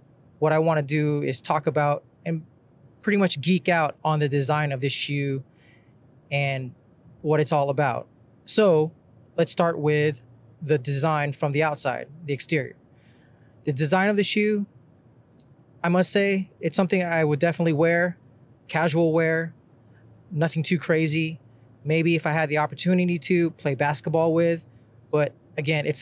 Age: 20-39